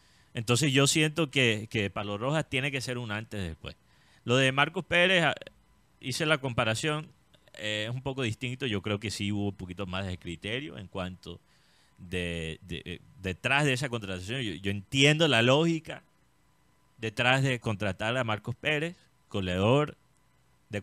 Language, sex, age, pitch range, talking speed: Spanish, male, 30-49, 95-145 Hz, 165 wpm